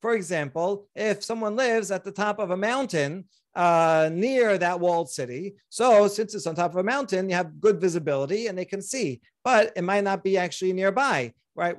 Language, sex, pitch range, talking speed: English, male, 160-210 Hz, 205 wpm